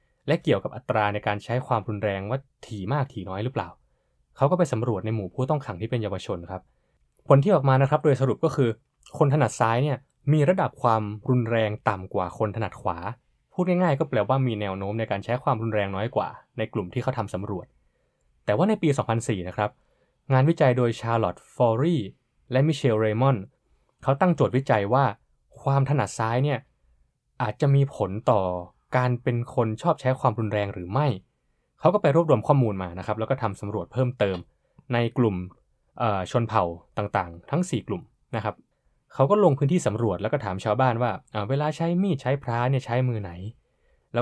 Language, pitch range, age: Thai, 105-135 Hz, 20-39